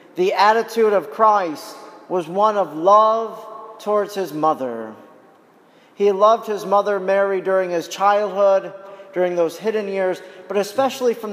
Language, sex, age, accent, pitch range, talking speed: English, male, 40-59, American, 185-225 Hz, 140 wpm